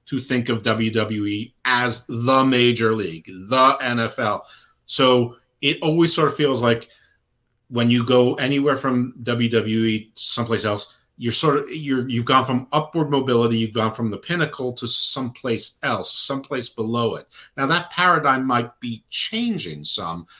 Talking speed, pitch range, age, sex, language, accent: 155 wpm, 110-135 Hz, 50-69, male, English, American